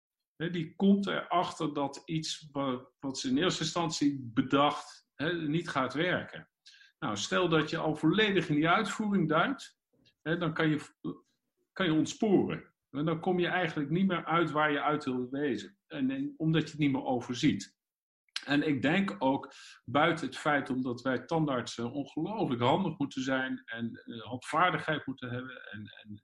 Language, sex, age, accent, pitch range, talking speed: English, male, 50-69, Dutch, 125-165 Hz, 155 wpm